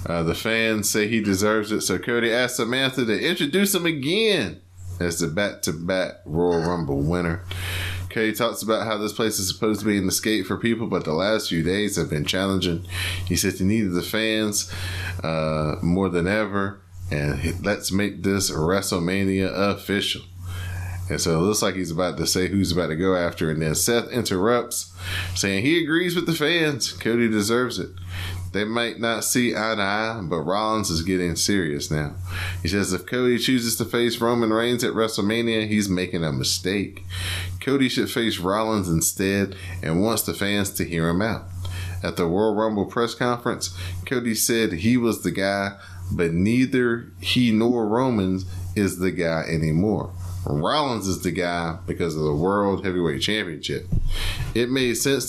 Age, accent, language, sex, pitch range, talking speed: 20-39, American, English, male, 90-110 Hz, 175 wpm